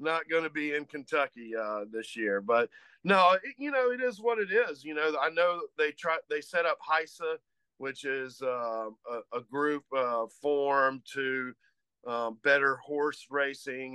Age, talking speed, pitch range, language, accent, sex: 40-59, 185 wpm, 130-160 Hz, English, American, male